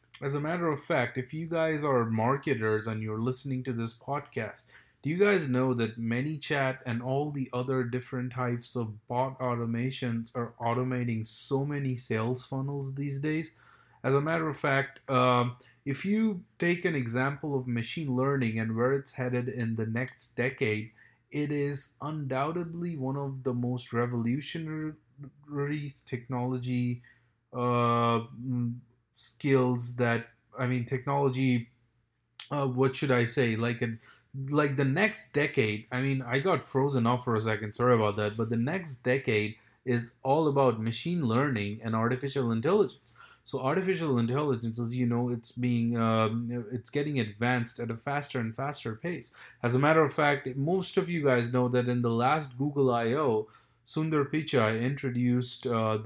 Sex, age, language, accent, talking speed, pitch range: male, 30-49, English, Indian, 160 wpm, 120-140 Hz